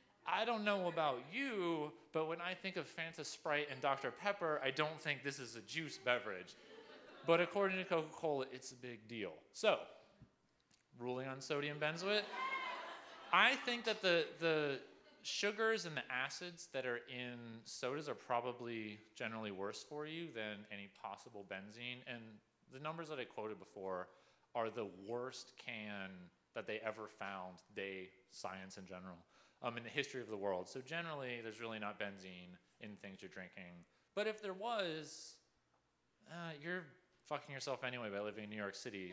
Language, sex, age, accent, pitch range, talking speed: English, male, 30-49, American, 110-180 Hz, 170 wpm